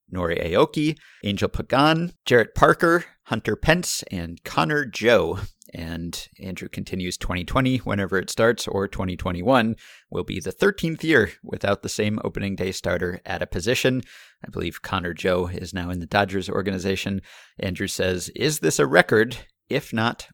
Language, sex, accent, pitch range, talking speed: English, male, American, 95-125 Hz, 155 wpm